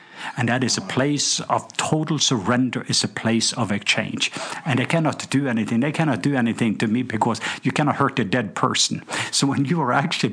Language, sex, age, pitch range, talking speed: English, male, 50-69, 105-130 Hz, 210 wpm